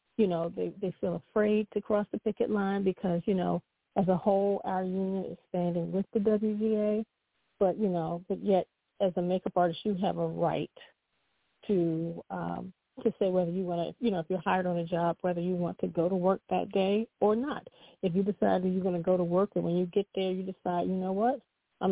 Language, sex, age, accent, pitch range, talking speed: English, female, 40-59, American, 170-205 Hz, 235 wpm